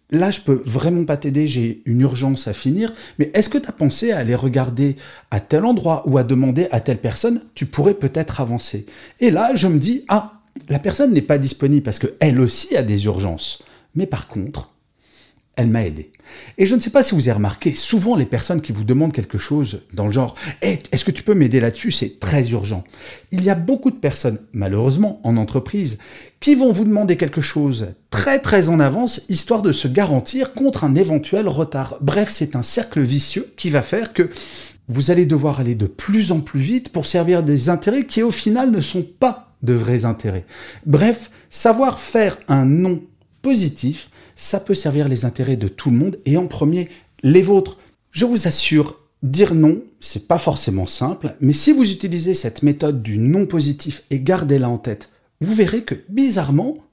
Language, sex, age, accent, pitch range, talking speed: French, male, 40-59, French, 125-195 Hz, 200 wpm